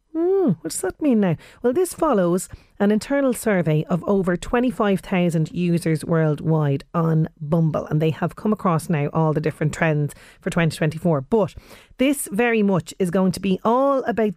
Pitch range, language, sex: 170-210 Hz, English, female